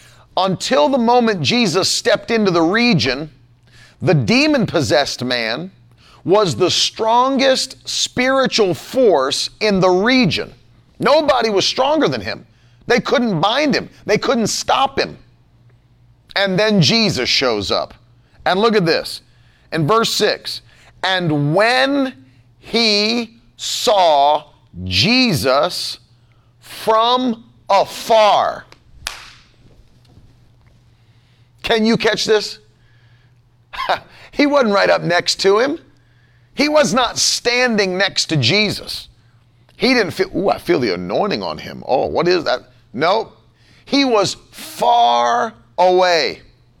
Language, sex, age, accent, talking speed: English, male, 40-59, American, 115 wpm